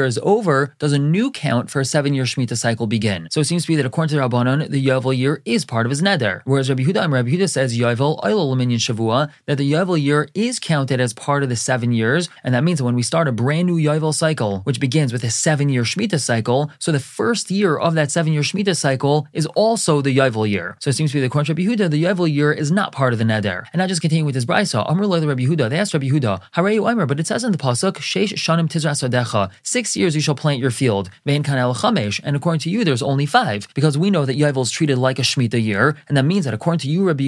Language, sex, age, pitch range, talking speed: English, male, 20-39, 130-165 Hz, 270 wpm